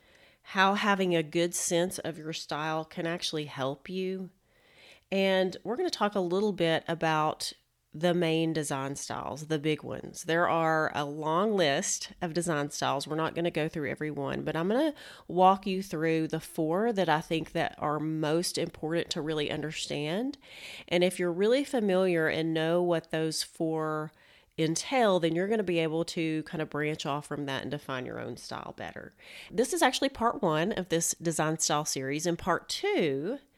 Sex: female